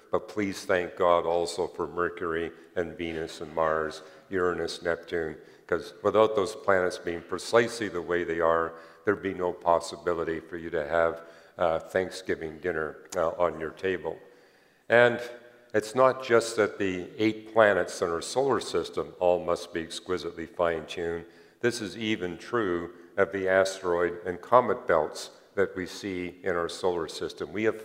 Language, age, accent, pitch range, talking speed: English, 50-69, American, 85-105 Hz, 160 wpm